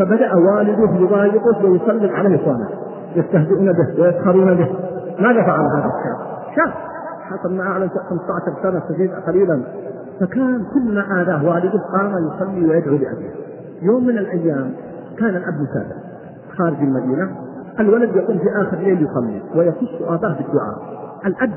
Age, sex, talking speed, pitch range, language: 50-69, male, 130 wpm, 165-215 Hz, Arabic